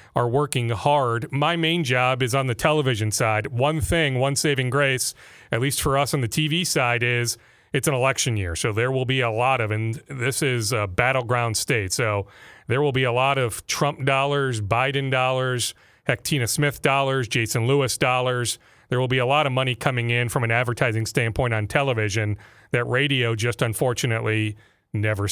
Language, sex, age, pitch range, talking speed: English, male, 40-59, 120-155 Hz, 185 wpm